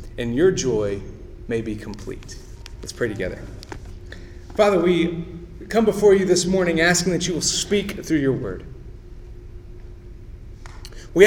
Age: 30-49